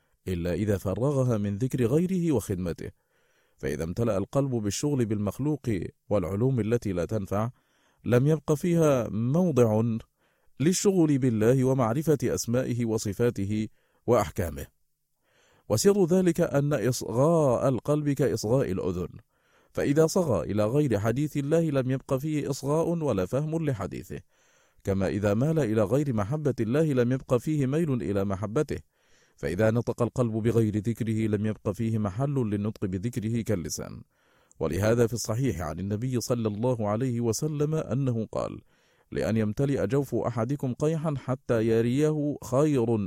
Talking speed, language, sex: 125 wpm, Arabic, male